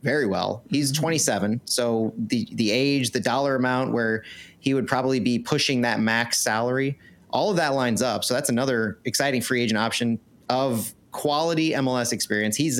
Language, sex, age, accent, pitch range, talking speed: English, male, 30-49, American, 110-140 Hz, 175 wpm